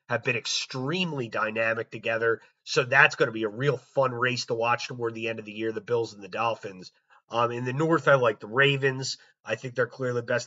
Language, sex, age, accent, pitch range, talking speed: English, male, 30-49, American, 125-155 Hz, 235 wpm